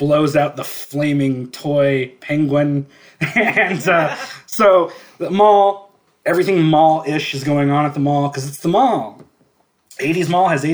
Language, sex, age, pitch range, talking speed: English, male, 20-39, 140-200 Hz, 145 wpm